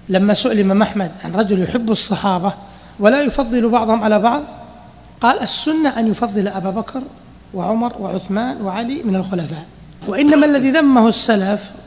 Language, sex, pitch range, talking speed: Arabic, male, 195-245 Hz, 135 wpm